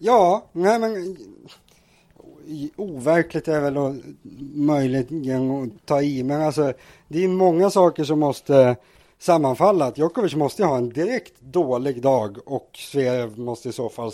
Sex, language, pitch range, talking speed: male, English, 120-150 Hz, 140 wpm